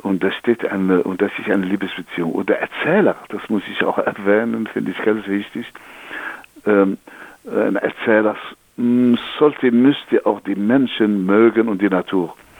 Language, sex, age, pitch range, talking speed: German, male, 60-79, 100-125 Hz, 155 wpm